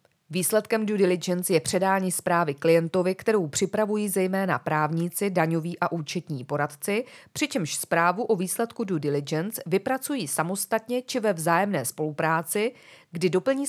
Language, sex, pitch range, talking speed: Czech, female, 160-210 Hz, 125 wpm